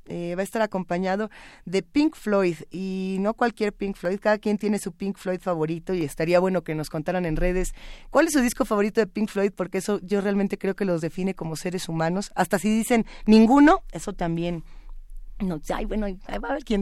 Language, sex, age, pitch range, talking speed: Spanish, female, 20-39, 175-230 Hz, 220 wpm